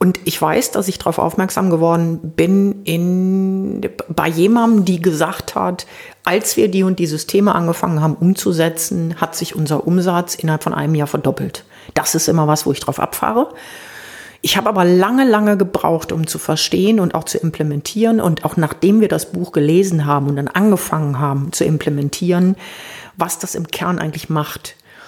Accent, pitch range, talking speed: German, 165-200 Hz, 175 wpm